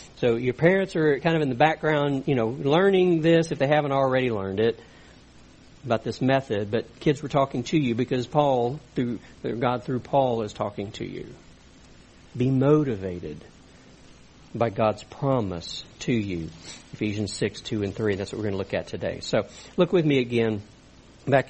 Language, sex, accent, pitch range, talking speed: English, male, American, 115-175 Hz, 180 wpm